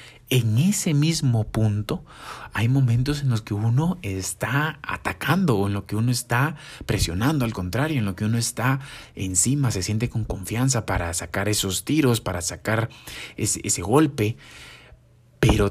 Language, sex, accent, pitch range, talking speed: Spanish, male, Mexican, 95-125 Hz, 155 wpm